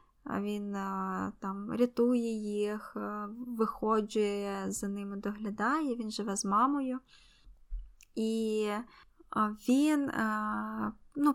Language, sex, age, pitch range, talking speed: Ukrainian, female, 20-39, 215-265 Hz, 85 wpm